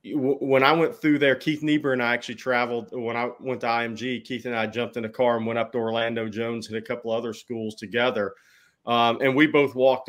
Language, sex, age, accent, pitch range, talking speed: English, male, 30-49, American, 110-125 Hz, 240 wpm